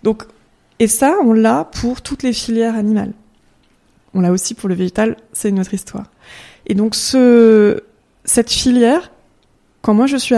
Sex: female